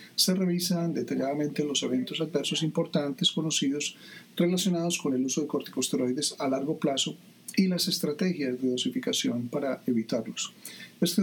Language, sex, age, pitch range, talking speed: Spanish, male, 40-59, 135-180 Hz, 135 wpm